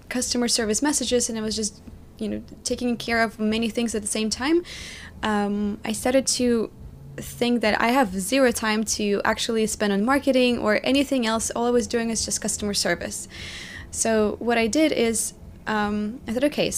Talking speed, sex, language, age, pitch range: 190 wpm, female, English, 20-39, 205-235 Hz